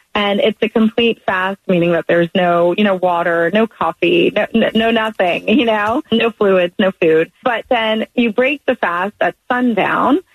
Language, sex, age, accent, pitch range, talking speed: English, female, 30-49, American, 180-225 Hz, 185 wpm